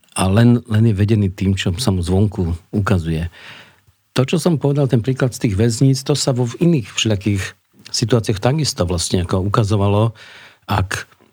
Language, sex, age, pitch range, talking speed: Slovak, male, 50-69, 100-120 Hz, 170 wpm